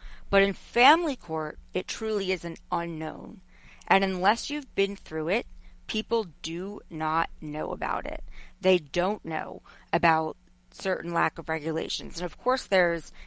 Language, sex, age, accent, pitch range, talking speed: English, female, 30-49, American, 170-200 Hz, 150 wpm